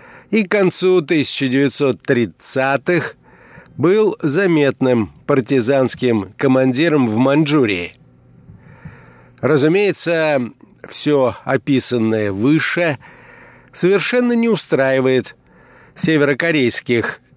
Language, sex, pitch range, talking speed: Russian, male, 125-165 Hz, 60 wpm